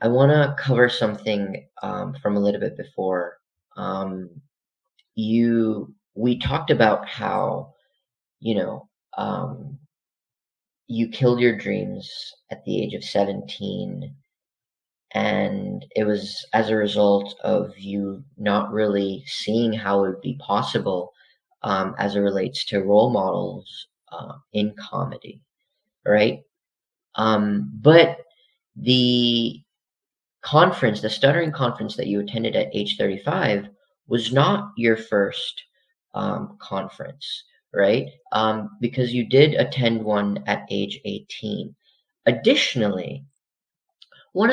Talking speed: 115 wpm